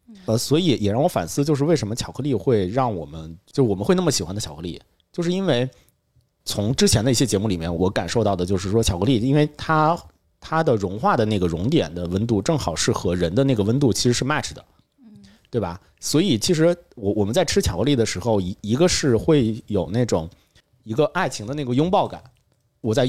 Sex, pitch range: male, 100-150 Hz